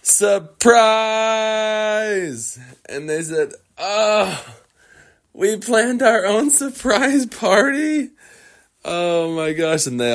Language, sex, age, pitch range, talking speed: English, male, 20-39, 100-165 Hz, 95 wpm